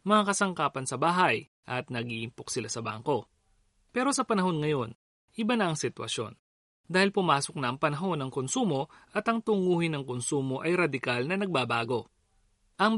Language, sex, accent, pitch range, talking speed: Filipino, male, native, 125-200 Hz, 155 wpm